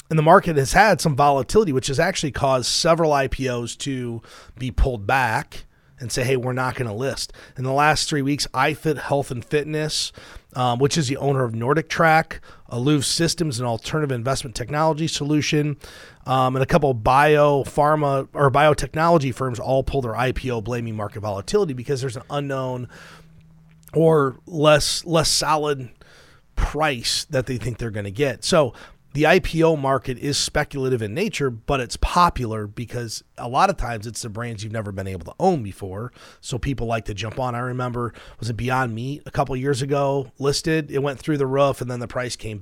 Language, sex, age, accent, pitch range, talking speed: English, male, 30-49, American, 120-150 Hz, 190 wpm